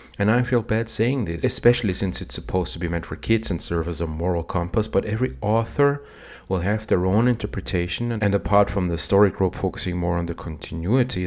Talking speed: 220 wpm